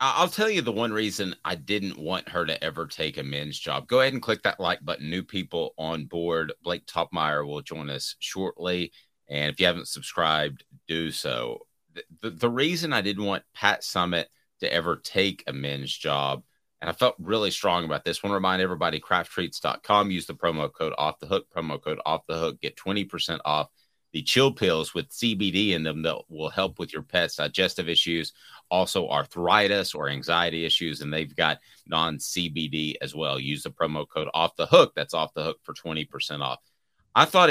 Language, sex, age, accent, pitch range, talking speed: English, male, 30-49, American, 80-105 Hz, 200 wpm